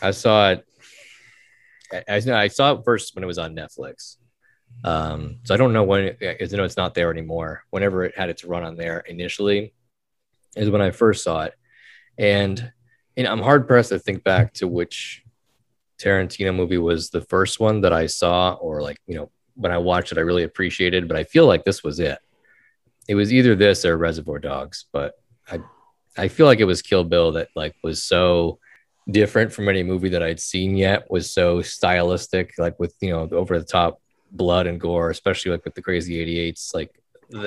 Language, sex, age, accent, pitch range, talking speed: English, male, 20-39, American, 85-105 Hz, 200 wpm